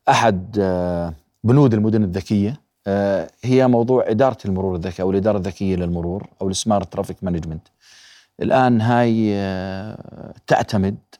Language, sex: Arabic, male